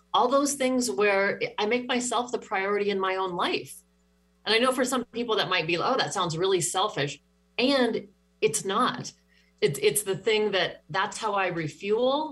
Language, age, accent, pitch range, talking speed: English, 40-59, American, 165-215 Hz, 195 wpm